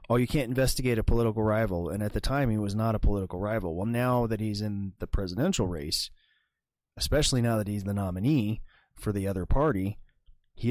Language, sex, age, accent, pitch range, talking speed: English, male, 30-49, American, 95-120 Hz, 200 wpm